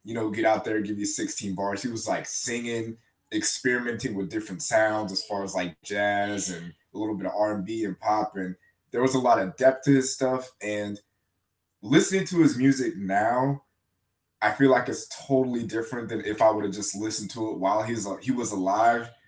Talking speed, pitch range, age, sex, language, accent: 205 wpm, 100-120 Hz, 20-39, male, English, American